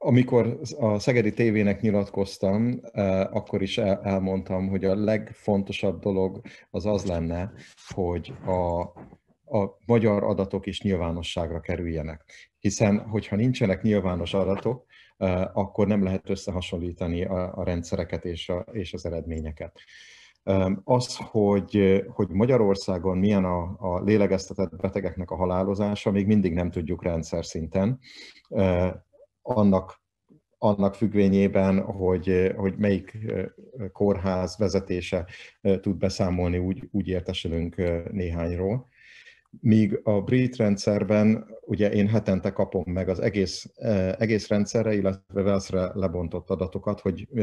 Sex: male